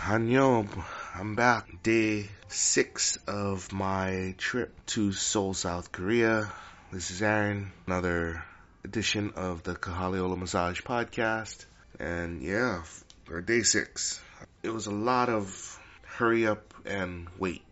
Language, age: English, 20-39